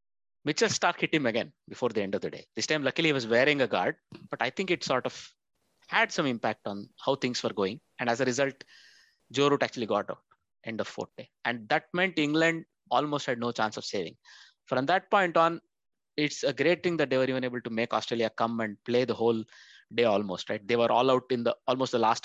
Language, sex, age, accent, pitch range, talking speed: English, male, 20-39, Indian, 115-150 Hz, 240 wpm